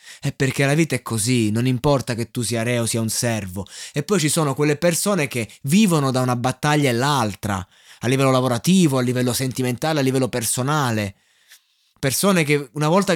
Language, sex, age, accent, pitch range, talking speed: Italian, male, 20-39, native, 115-150 Hz, 185 wpm